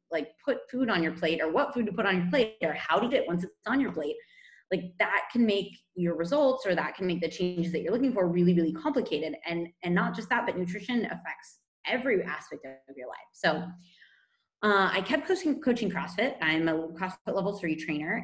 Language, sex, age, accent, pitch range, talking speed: English, female, 20-39, American, 170-230 Hz, 225 wpm